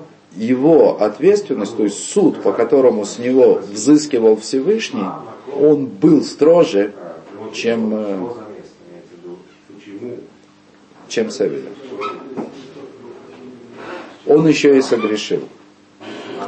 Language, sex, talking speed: Russian, male, 80 wpm